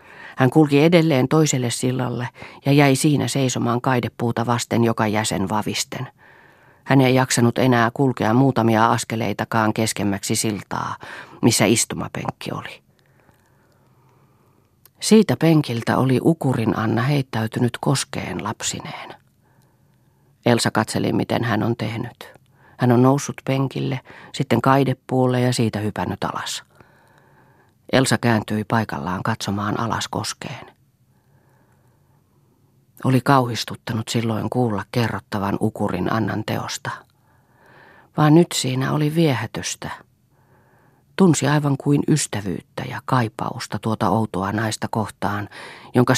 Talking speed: 105 wpm